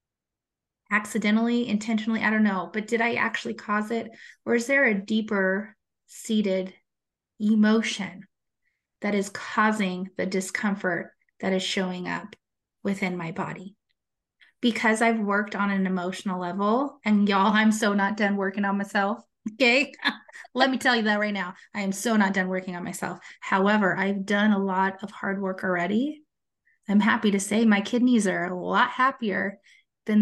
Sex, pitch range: female, 190-225 Hz